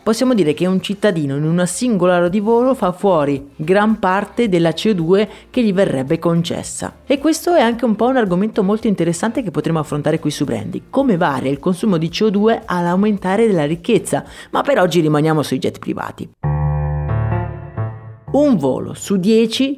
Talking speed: 175 wpm